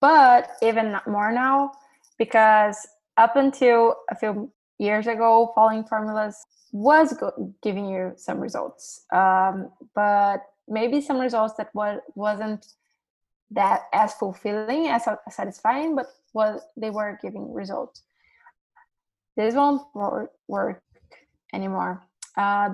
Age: 20-39